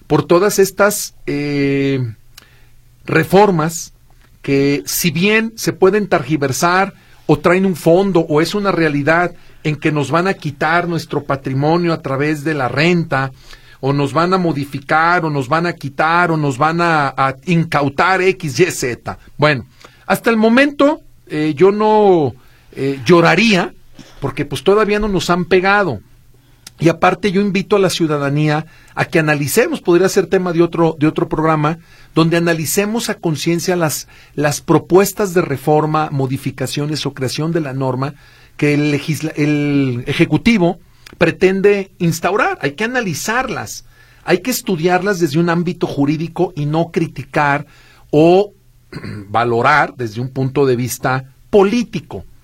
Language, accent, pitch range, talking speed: Spanish, Mexican, 135-175 Hz, 145 wpm